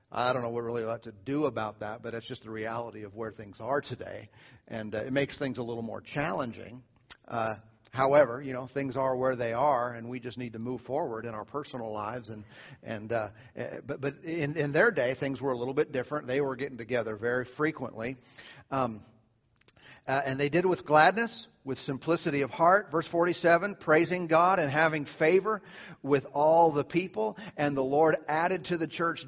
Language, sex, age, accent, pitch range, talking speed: English, male, 50-69, American, 130-170 Hz, 210 wpm